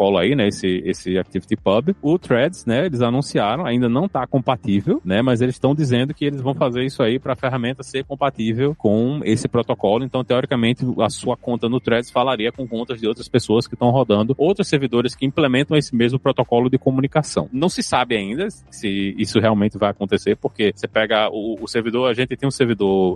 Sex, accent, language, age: male, Brazilian, Portuguese, 20-39